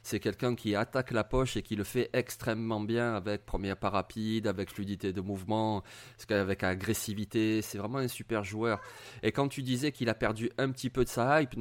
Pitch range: 105-130 Hz